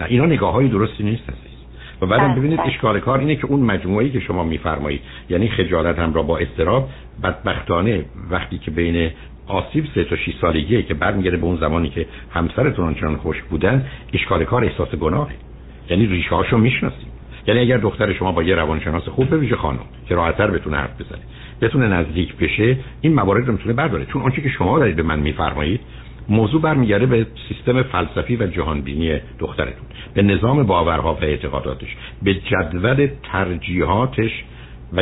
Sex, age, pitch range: male, 60-79, 80-115 Hz